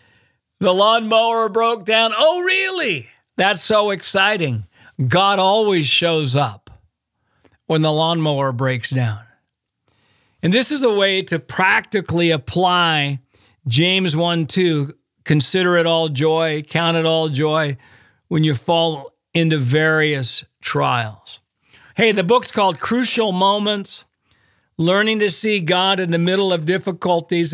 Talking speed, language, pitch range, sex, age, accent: 125 wpm, English, 145-195 Hz, male, 50-69, American